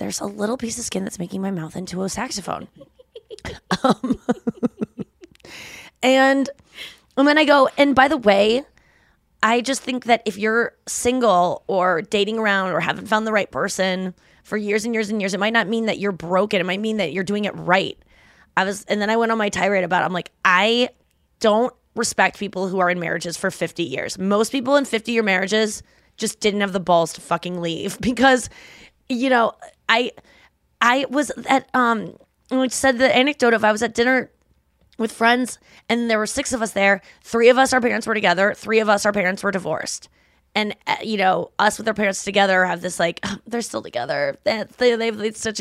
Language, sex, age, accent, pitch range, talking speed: English, female, 20-39, American, 195-250 Hz, 210 wpm